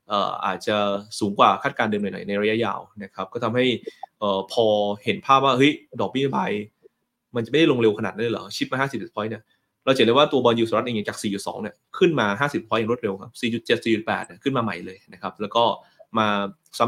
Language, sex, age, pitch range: Thai, male, 20-39, 100-130 Hz